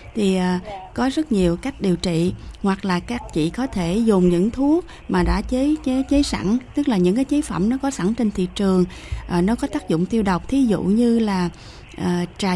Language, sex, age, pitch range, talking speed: Vietnamese, female, 20-39, 185-255 Hz, 215 wpm